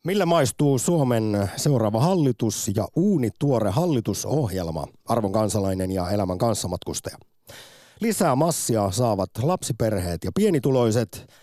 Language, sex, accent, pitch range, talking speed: Finnish, male, native, 100-140 Hz, 100 wpm